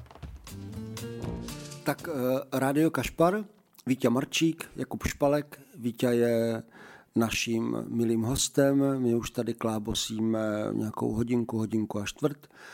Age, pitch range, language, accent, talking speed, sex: 50-69, 110-130 Hz, Czech, native, 100 wpm, male